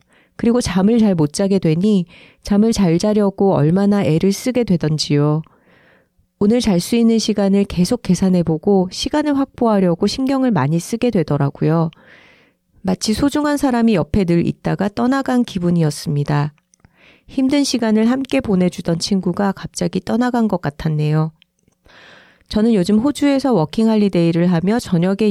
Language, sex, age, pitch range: Korean, female, 30-49, 170-225 Hz